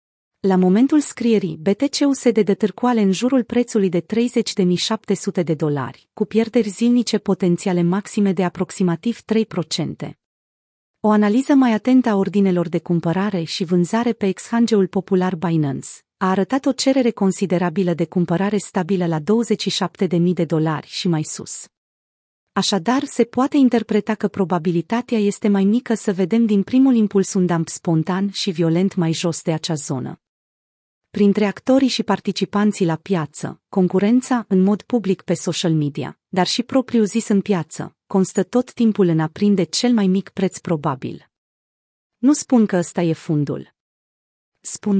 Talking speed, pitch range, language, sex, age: 150 wpm, 170-225 Hz, Romanian, female, 30-49